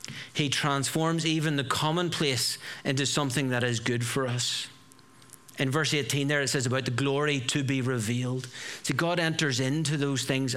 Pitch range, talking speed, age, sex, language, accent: 130-155 Hz, 170 wpm, 40-59, male, English, Irish